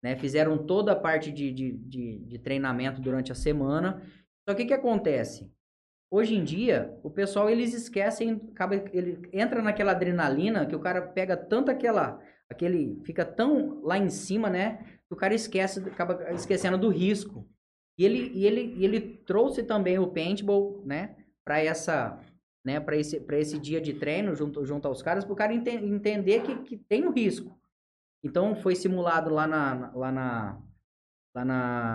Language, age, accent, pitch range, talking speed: Portuguese, 10-29, Brazilian, 145-200 Hz, 180 wpm